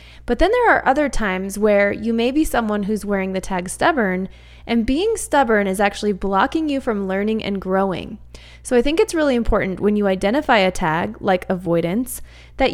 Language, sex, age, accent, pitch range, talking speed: English, female, 20-39, American, 190-240 Hz, 195 wpm